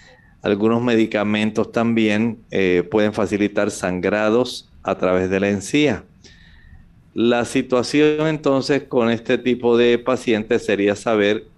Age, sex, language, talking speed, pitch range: 40-59, male, Spanish, 115 wpm, 105-125 Hz